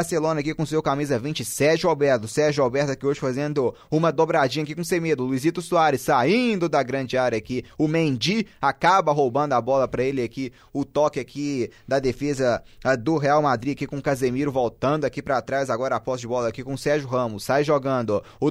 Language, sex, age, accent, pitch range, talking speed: Portuguese, male, 20-39, Brazilian, 145-180 Hz, 200 wpm